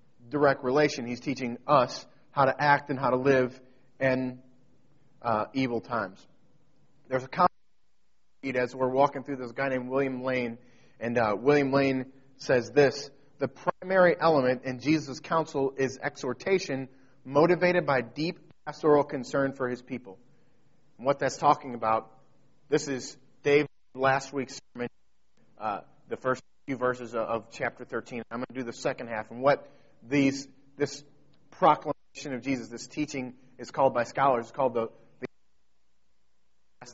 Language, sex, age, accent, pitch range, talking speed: English, male, 30-49, American, 125-145 Hz, 155 wpm